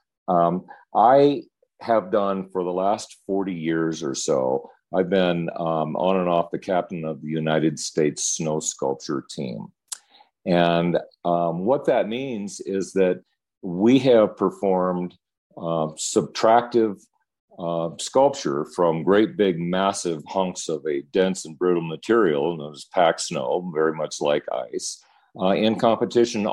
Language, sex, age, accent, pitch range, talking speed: English, male, 50-69, American, 85-100 Hz, 140 wpm